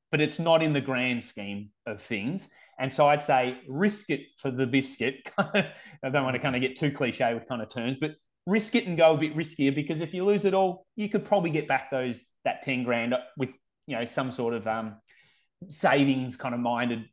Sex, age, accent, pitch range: male, 30-49, Australian, 120-150 Hz